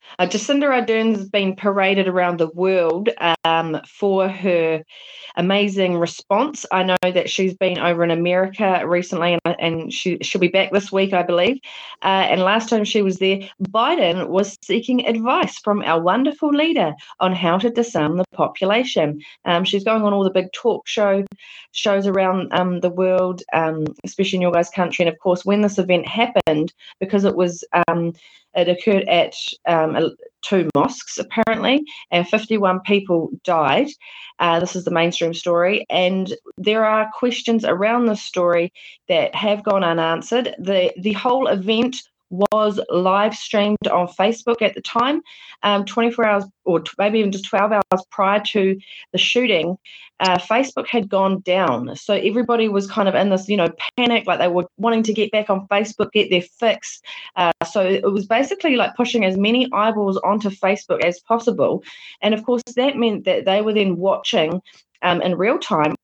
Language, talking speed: English, 175 wpm